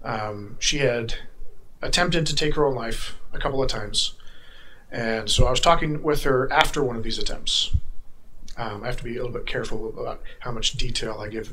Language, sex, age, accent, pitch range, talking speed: English, male, 40-59, American, 110-135 Hz, 210 wpm